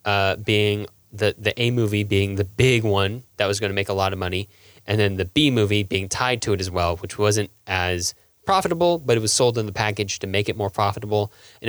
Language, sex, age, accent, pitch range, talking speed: English, male, 10-29, American, 95-110 Hz, 240 wpm